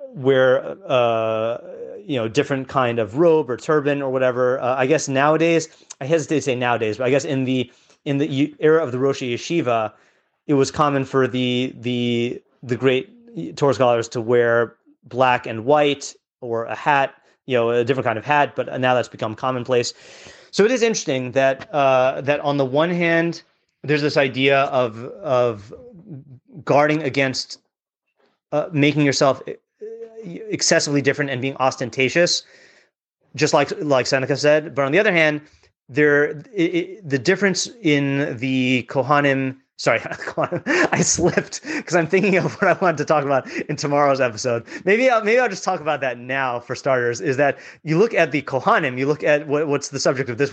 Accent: American